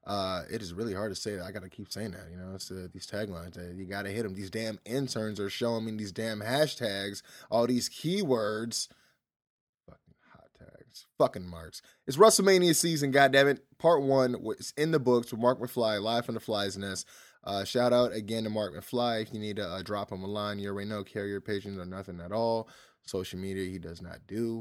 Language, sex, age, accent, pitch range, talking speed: English, male, 20-39, American, 100-120 Hz, 220 wpm